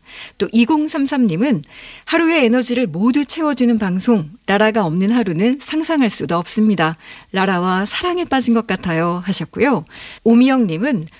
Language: Korean